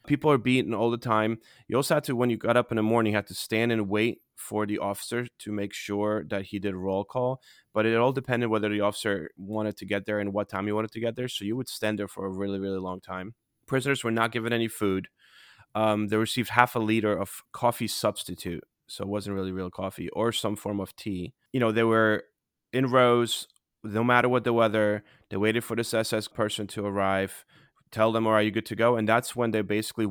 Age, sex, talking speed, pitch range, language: 20-39, male, 245 wpm, 100-115 Hz, English